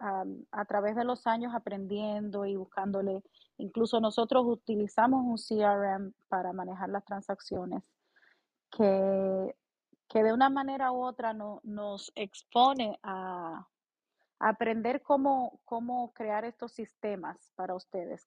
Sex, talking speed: female, 120 wpm